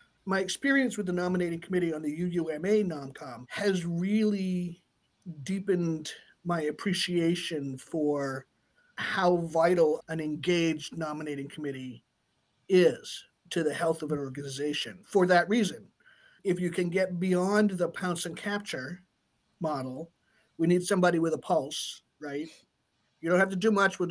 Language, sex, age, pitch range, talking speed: English, male, 50-69, 160-200 Hz, 140 wpm